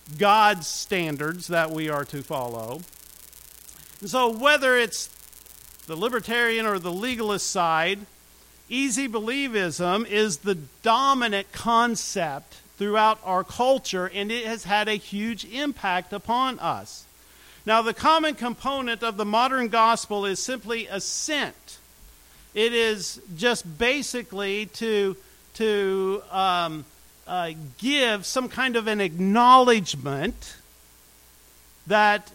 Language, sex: English, male